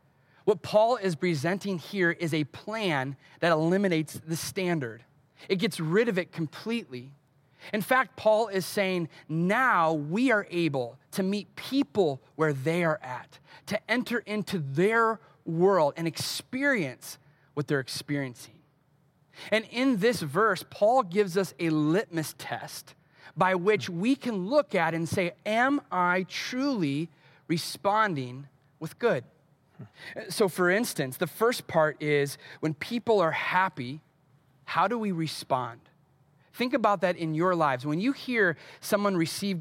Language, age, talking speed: English, 30-49, 140 wpm